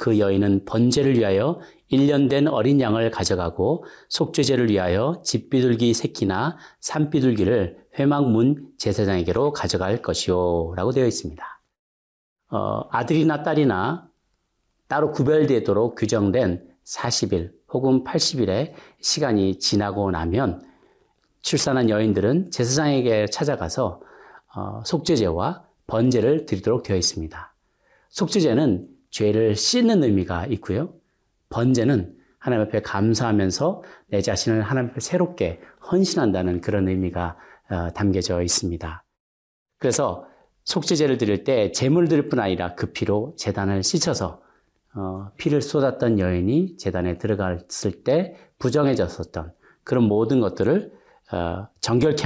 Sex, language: male, Korean